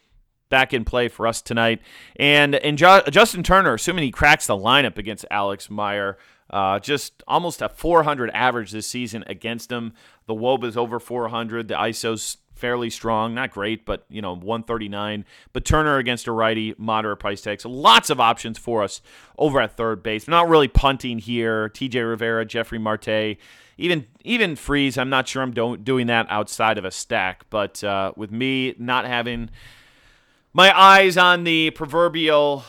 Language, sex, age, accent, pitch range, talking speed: English, male, 30-49, American, 110-145 Hz, 175 wpm